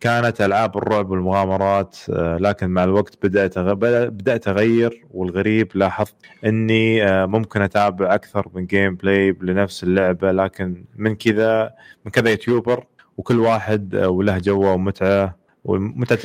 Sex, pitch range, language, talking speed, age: male, 95-110 Hz, Arabic, 120 wpm, 20-39